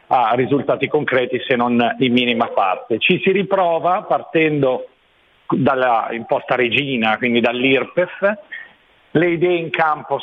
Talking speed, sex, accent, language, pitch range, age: 125 wpm, male, native, Italian, 135-160 Hz, 40-59